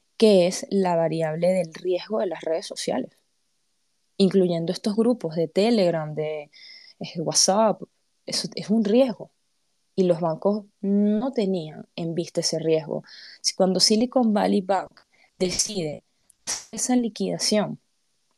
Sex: female